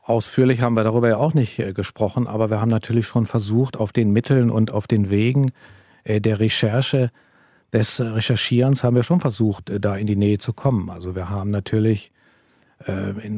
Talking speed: 200 wpm